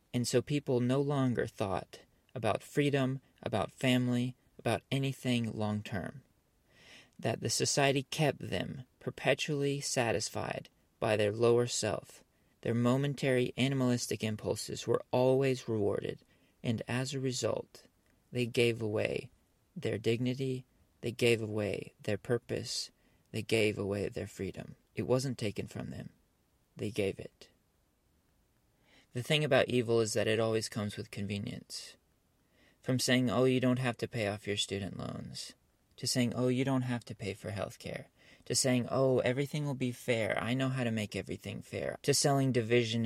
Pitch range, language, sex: 110-130 Hz, English, male